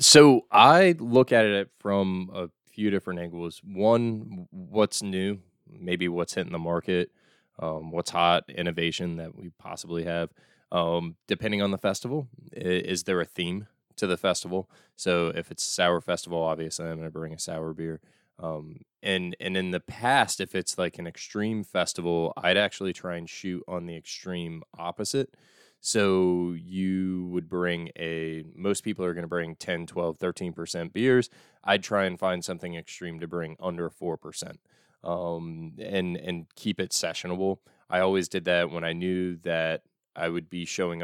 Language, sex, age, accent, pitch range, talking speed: English, male, 20-39, American, 85-95 Hz, 170 wpm